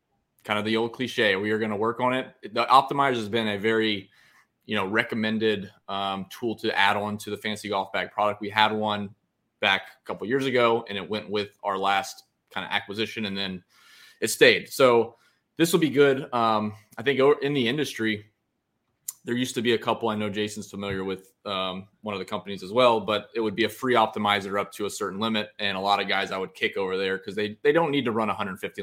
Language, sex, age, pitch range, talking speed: English, male, 20-39, 100-115 Hz, 235 wpm